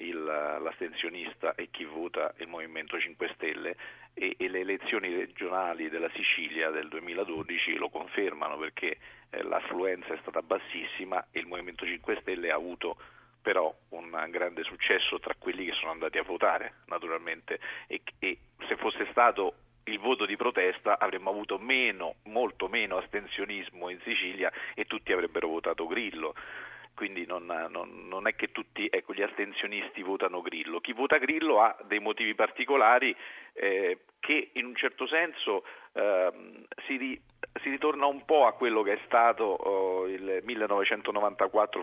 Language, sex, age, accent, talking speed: Italian, male, 40-59, native, 150 wpm